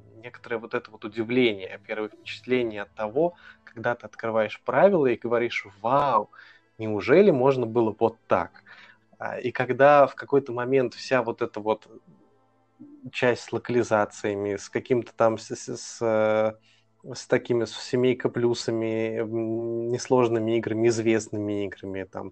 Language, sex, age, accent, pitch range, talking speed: Russian, male, 20-39, native, 110-125 Hz, 130 wpm